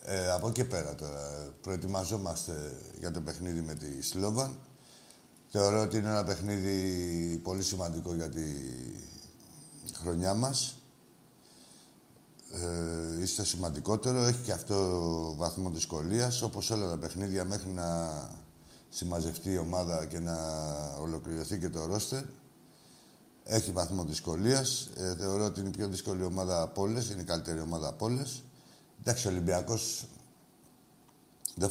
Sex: male